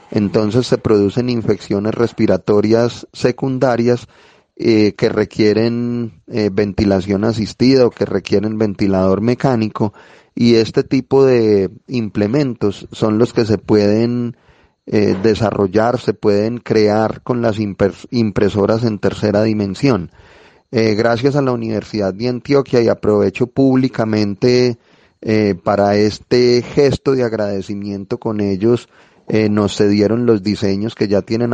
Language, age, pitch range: Spanish, 30-49, 100-120 Hz